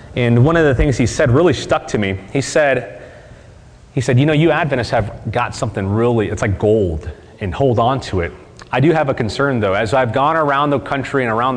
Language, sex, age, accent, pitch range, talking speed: English, male, 30-49, American, 110-140 Hz, 235 wpm